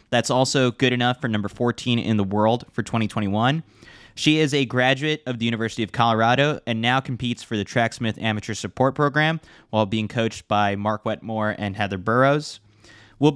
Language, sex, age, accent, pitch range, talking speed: English, male, 20-39, American, 110-135 Hz, 180 wpm